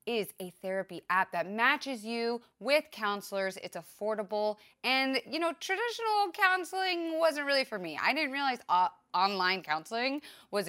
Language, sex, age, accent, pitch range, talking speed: English, female, 20-39, American, 185-260 Hz, 150 wpm